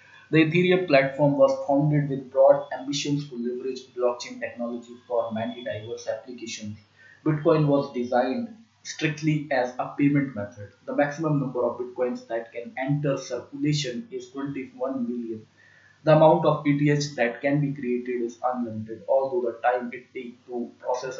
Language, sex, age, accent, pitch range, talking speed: English, male, 20-39, Indian, 120-145 Hz, 150 wpm